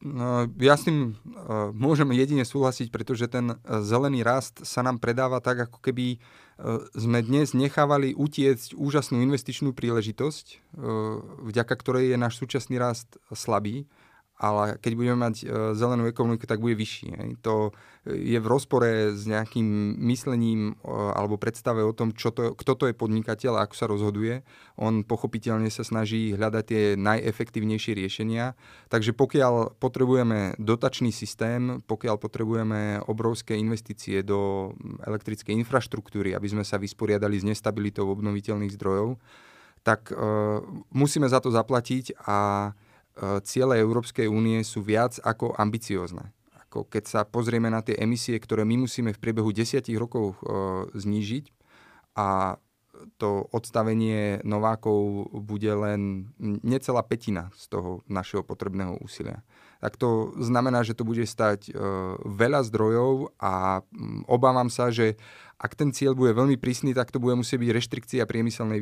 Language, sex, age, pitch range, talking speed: Slovak, male, 30-49, 105-125 Hz, 140 wpm